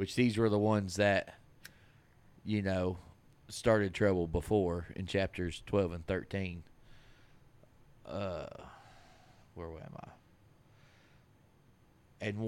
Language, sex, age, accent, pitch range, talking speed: English, male, 30-49, American, 90-115 Hz, 100 wpm